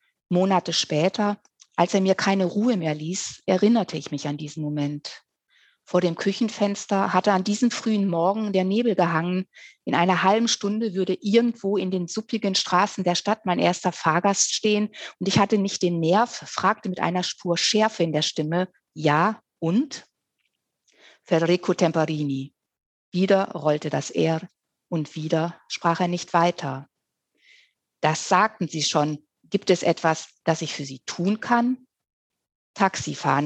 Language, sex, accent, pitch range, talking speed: German, female, German, 155-195 Hz, 150 wpm